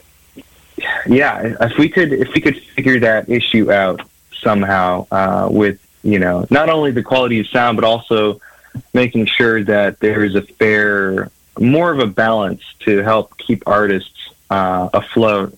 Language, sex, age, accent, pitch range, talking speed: English, male, 20-39, American, 100-115 Hz, 160 wpm